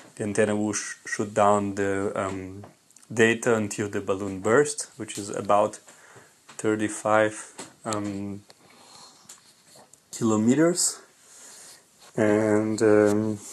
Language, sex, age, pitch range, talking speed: English, male, 30-49, 105-125 Hz, 85 wpm